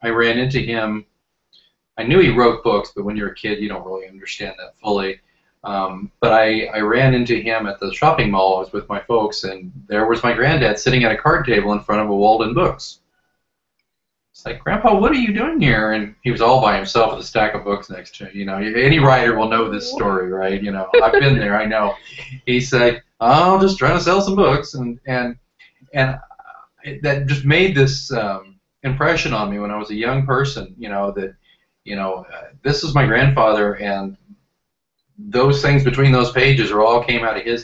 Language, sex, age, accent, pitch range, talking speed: English, male, 40-59, American, 105-135 Hz, 220 wpm